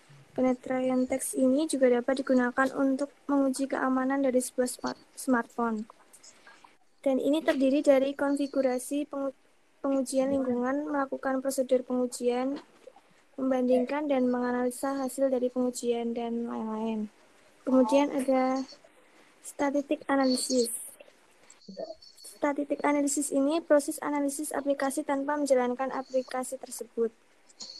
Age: 20-39